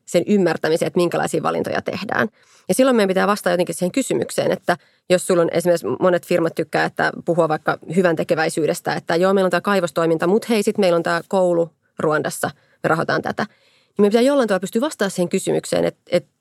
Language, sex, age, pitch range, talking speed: Finnish, female, 30-49, 170-205 Hz, 200 wpm